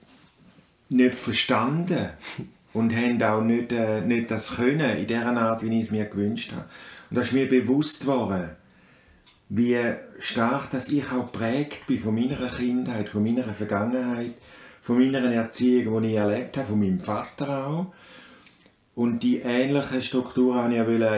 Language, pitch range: German, 110-125 Hz